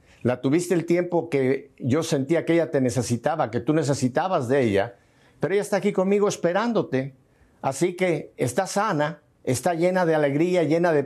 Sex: male